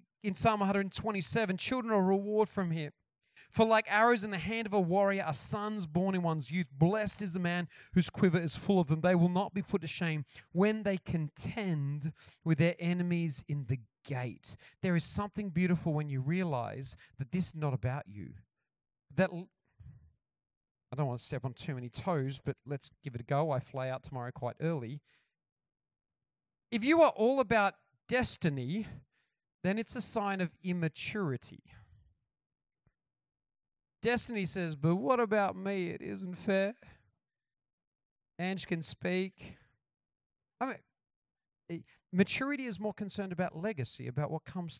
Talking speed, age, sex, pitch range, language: 165 wpm, 40-59, male, 135-200 Hz, English